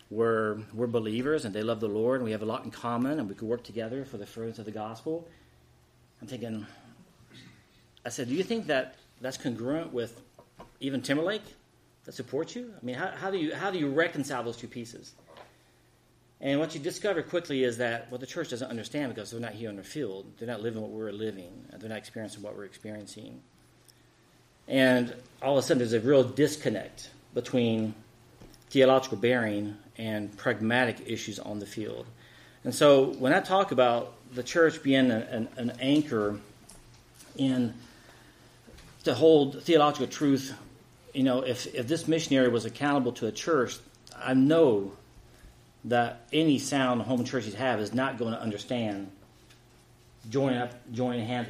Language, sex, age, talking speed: English, male, 40-59, 175 wpm